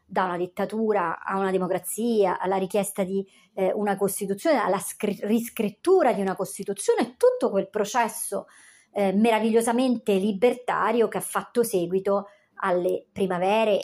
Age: 30-49